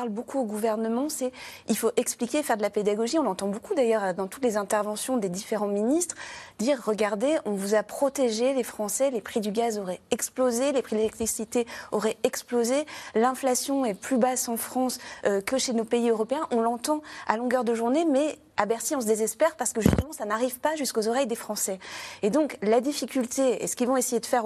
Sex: female